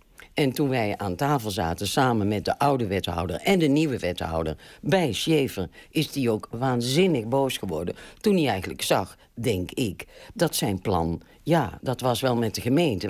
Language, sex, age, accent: Dutch, female, 50-69, Dutch